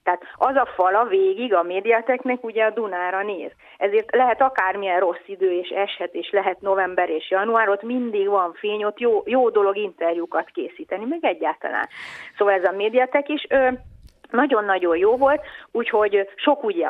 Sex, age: female, 30-49